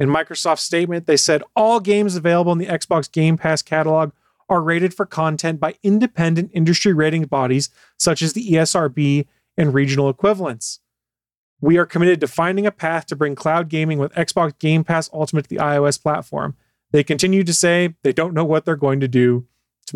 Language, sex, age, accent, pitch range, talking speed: English, male, 30-49, American, 145-185 Hz, 190 wpm